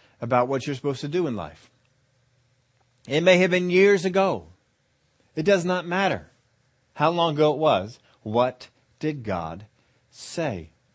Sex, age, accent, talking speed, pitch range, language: male, 40-59, American, 150 wpm, 120-145 Hz, English